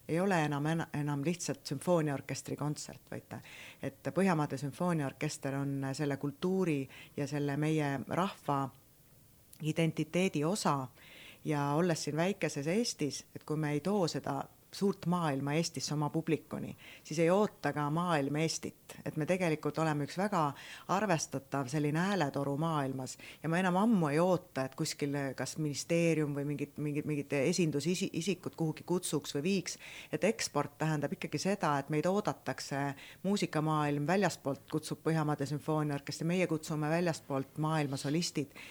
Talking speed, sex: 135 wpm, female